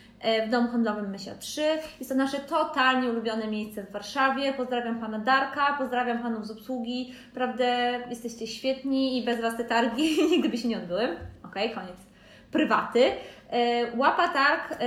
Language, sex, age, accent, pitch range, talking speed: Polish, female, 20-39, native, 235-280 Hz, 155 wpm